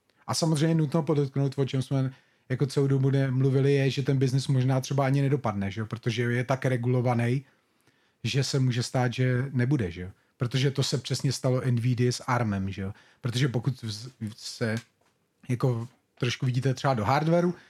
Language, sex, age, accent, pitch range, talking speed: Czech, male, 30-49, native, 115-135 Hz, 175 wpm